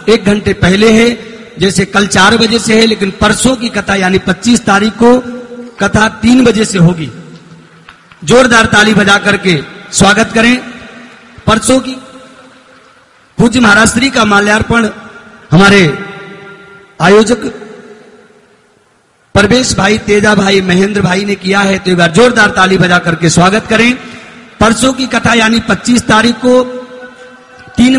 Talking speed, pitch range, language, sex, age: 135 wpm, 200-240 Hz, Gujarati, male, 50-69